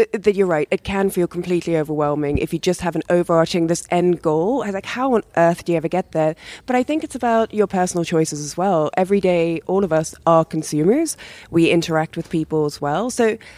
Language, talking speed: English, 220 wpm